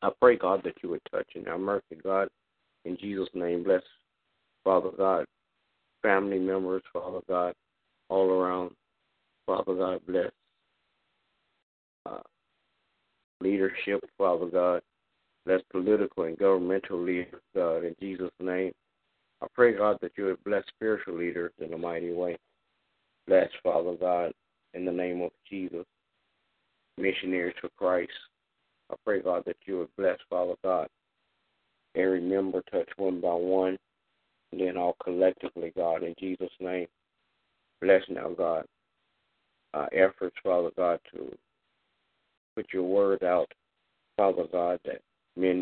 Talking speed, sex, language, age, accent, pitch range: 135 wpm, male, English, 50-69, American, 90-95 Hz